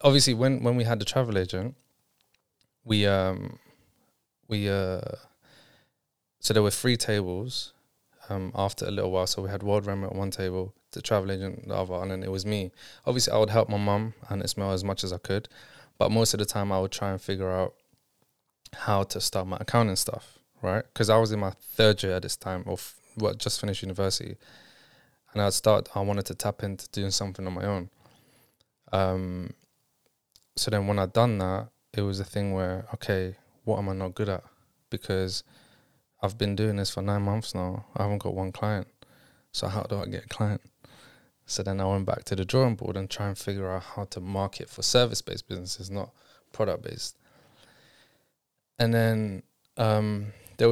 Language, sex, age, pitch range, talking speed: English, male, 20-39, 95-115 Hz, 195 wpm